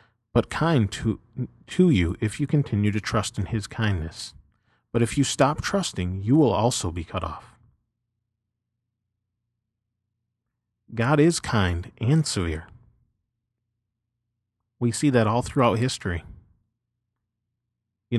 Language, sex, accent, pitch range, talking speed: English, male, American, 100-115 Hz, 120 wpm